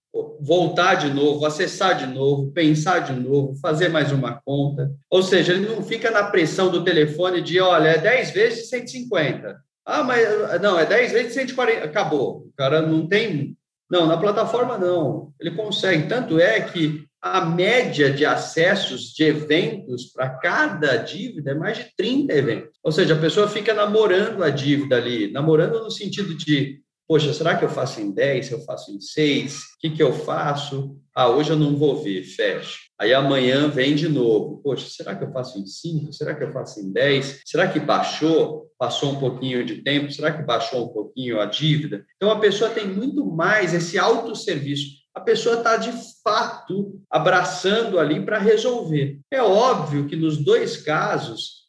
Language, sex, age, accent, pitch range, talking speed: Portuguese, male, 40-59, Brazilian, 145-210 Hz, 180 wpm